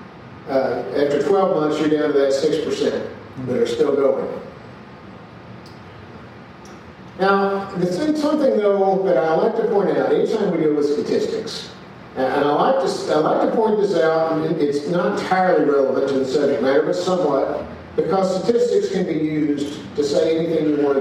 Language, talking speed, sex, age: English, 170 wpm, male, 50-69